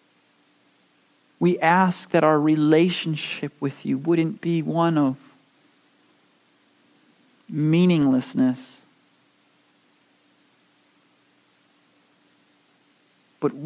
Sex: male